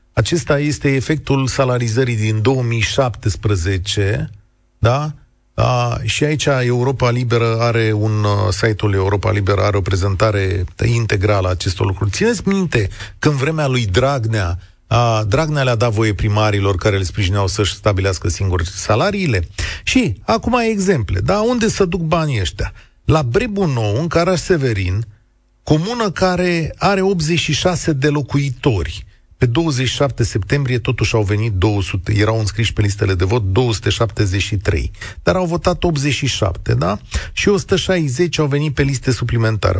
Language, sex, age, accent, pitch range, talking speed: Romanian, male, 40-59, native, 105-155 Hz, 135 wpm